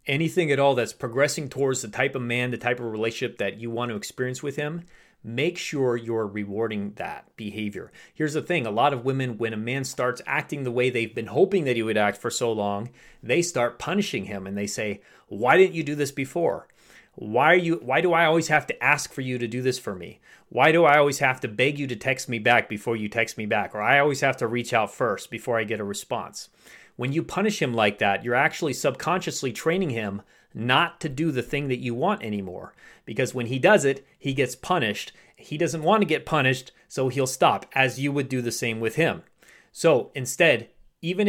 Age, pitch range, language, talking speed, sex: 30-49, 115-155 Hz, English, 230 wpm, male